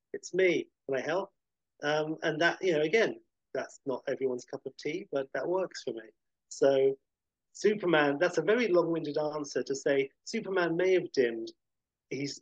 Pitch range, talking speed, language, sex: 135-210 Hz, 175 wpm, English, male